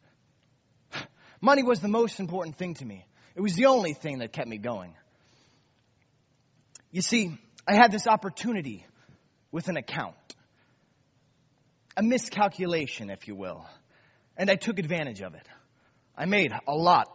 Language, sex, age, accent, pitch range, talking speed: English, male, 30-49, American, 130-195 Hz, 145 wpm